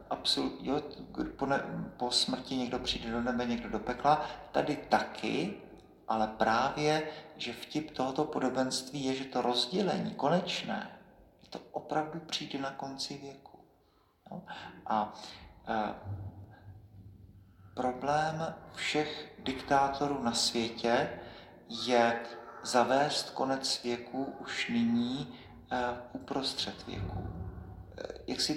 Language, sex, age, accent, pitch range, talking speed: Czech, male, 50-69, native, 120-145 Hz, 90 wpm